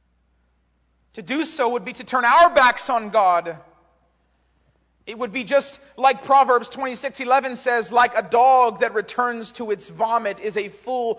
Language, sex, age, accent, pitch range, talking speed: English, male, 40-59, American, 185-265 Hz, 160 wpm